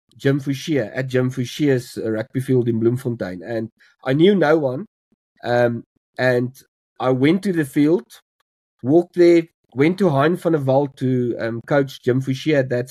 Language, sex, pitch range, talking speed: English, male, 125-155 Hz, 165 wpm